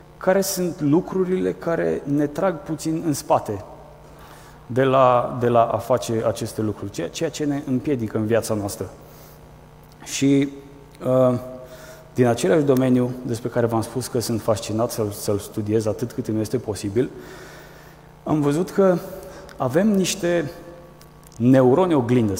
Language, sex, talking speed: Romanian, male, 130 wpm